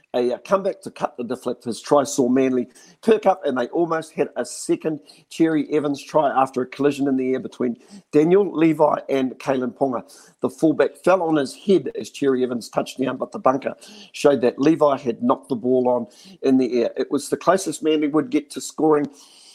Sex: male